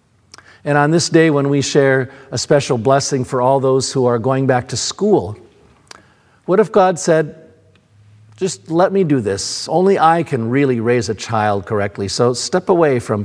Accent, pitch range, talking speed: American, 110-150 Hz, 180 wpm